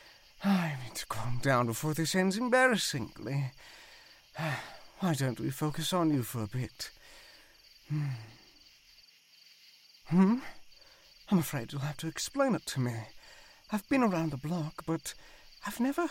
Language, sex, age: English, male, 50-69